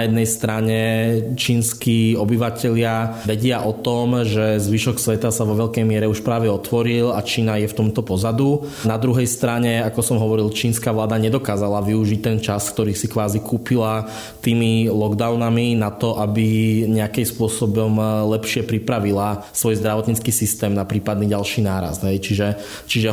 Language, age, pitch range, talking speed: Slovak, 20-39, 105-115 Hz, 155 wpm